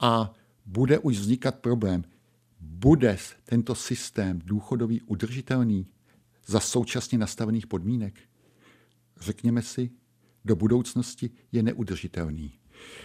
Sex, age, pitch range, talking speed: male, 60-79, 105-125 Hz, 90 wpm